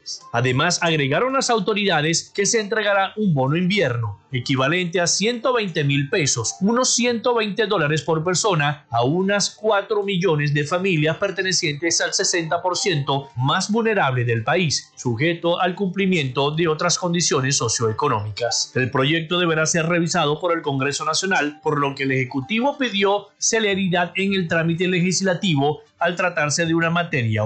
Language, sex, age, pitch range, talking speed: Spanish, male, 40-59, 145-195 Hz, 140 wpm